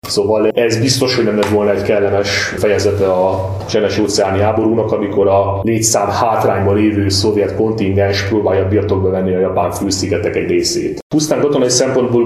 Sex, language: male, Hungarian